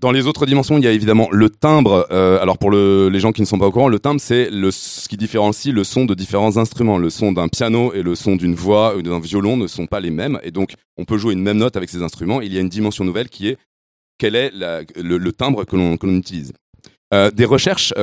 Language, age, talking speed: French, 30-49, 280 wpm